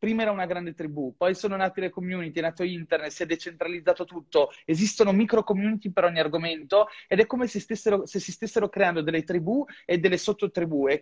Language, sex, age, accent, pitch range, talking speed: Italian, male, 30-49, native, 160-200 Hz, 200 wpm